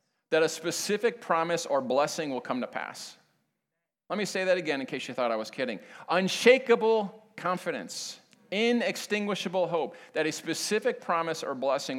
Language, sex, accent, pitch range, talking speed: English, male, American, 155-210 Hz, 160 wpm